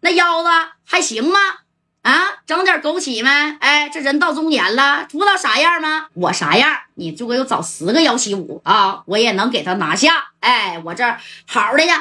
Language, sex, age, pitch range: Chinese, female, 20-39, 205-325 Hz